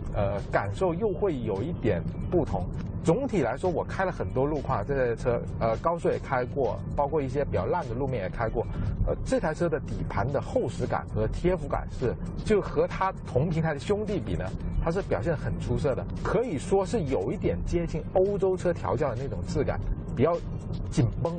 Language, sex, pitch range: Chinese, male, 115-175 Hz